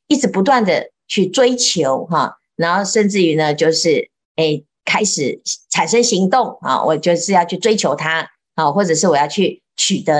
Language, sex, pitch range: Chinese, female, 180-290 Hz